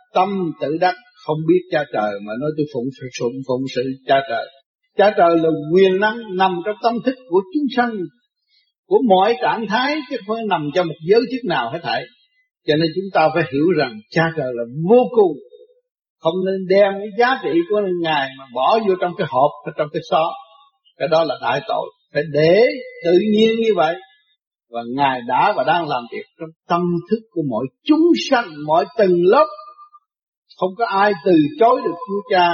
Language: Vietnamese